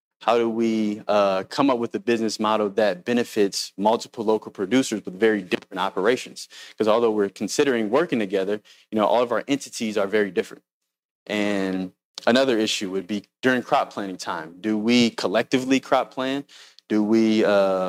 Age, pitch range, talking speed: 20-39, 100-120 Hz, 170 wpm